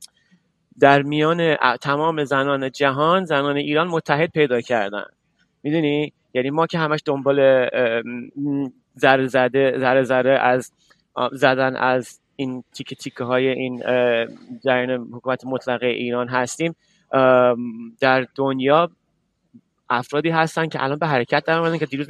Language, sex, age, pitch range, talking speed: Persian, male, 30-49, 130-155 Hz, 120 wpm